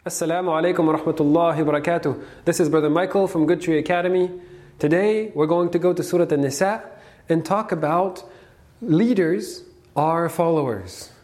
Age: 20-39